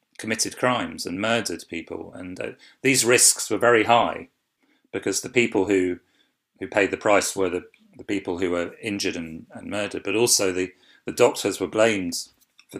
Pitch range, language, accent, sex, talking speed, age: 95-110 Hz, English, British, male, 180 wpm, 40-59